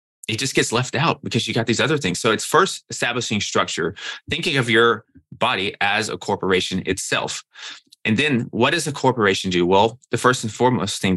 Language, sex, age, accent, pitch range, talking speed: English, male, 20-39, American, 95-125 Hz, 200 wpm